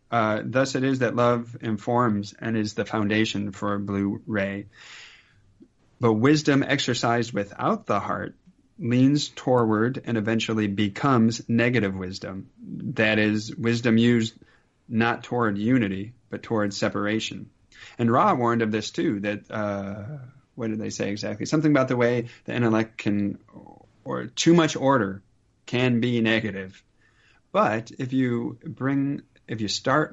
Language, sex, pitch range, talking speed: English, male, 100-120 Hz, 145 wpm